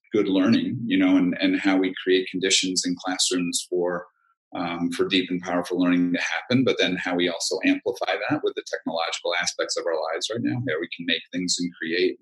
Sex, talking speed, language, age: male, 215 wpm, English, 40-59